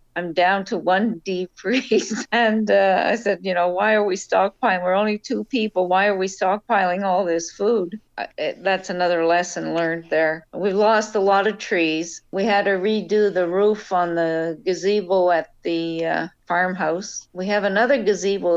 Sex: female